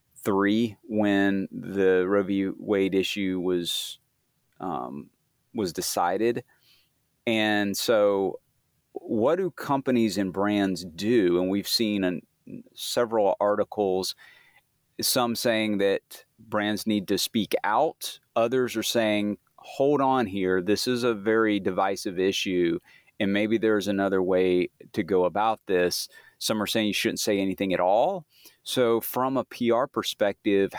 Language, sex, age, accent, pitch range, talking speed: English, male, 30-49, American, 95-110 Hz, 135 wpm